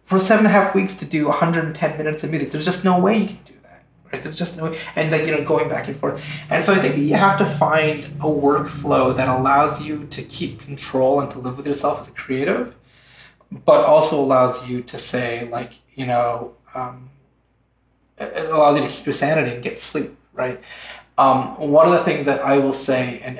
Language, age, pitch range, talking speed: English, 30-49, 130-160 Hz, 230 wpm